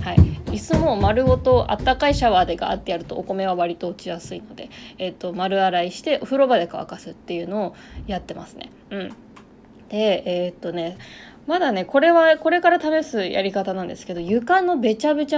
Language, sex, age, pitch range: Japanese, female, 20-39, 190-295 Hz